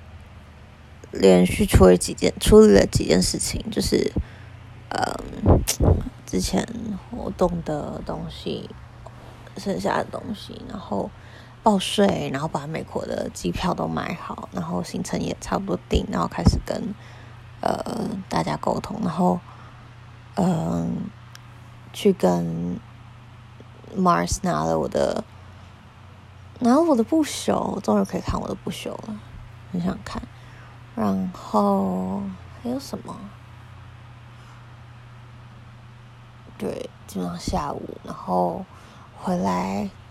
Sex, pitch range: female, 95-140 Hz